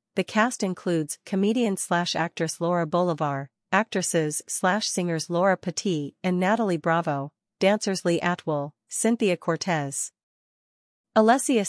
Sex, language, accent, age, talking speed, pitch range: female, English, American, 40-59, 90 wpm, 160-195 Hz